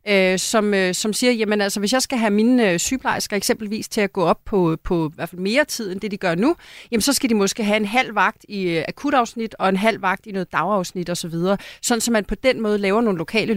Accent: native